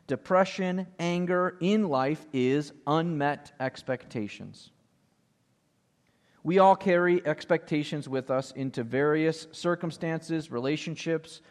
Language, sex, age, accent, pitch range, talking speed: English, male, 40-59, American, 145-190 Hz, 90 wpm